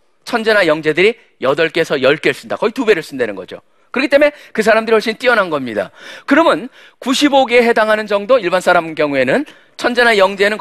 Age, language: 40-59, Korean